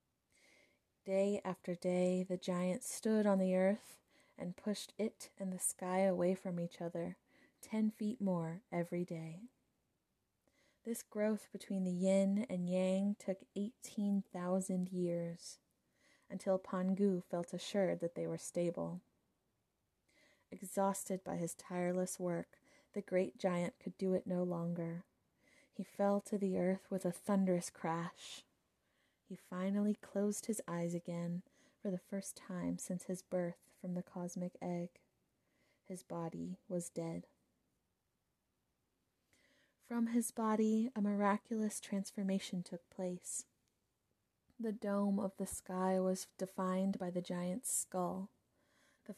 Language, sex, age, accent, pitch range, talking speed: English, female, 20-39, American, 180-205 Hz, 130 wpm